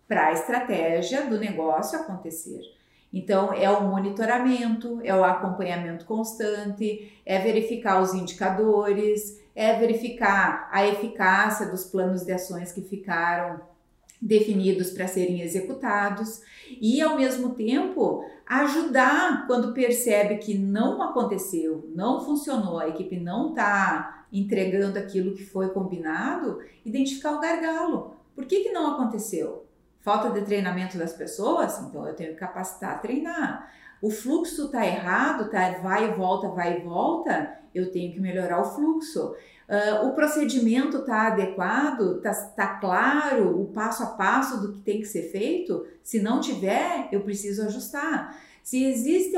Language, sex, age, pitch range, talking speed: Portuguese, female, 40-59, 190-260 Hz, 135 wpm